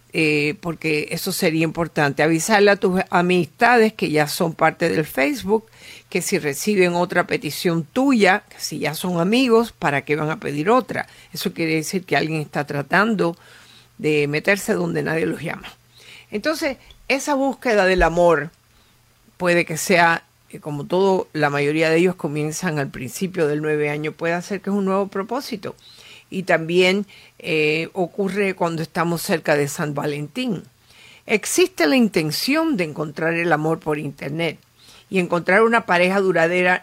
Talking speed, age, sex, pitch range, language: 160 wpm, 50-69, female, 155-195 Hz, Spanish